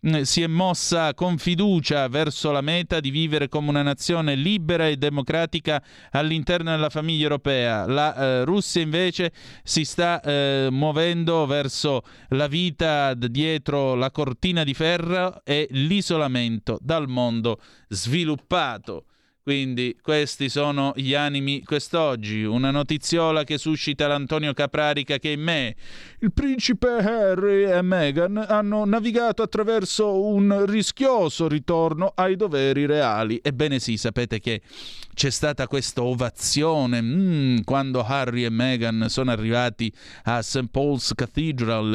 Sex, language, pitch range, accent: male, Italian, 125-165 Hz, native